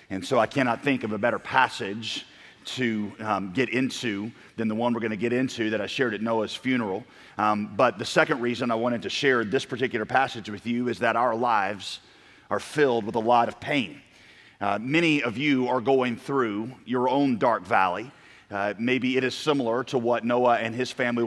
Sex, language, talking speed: male, English, 205 wpm